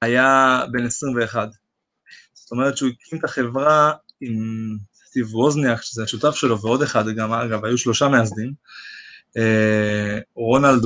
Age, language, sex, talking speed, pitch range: 20-39, Hebrew, male, 135 wpm, 115-140 Hz